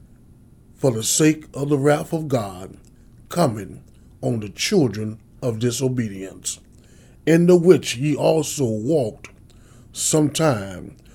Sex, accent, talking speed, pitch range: male, American, 115 wpm, 115-155 Hz